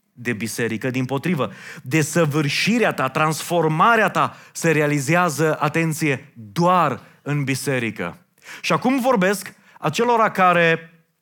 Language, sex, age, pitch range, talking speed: Romanian, male, 30-49, 160-205 Hz, 100 wpm